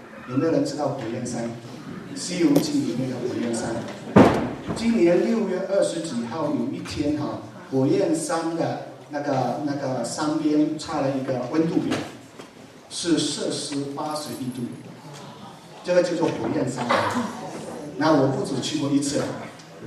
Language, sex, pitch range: Chinese, male, 125-155 Hz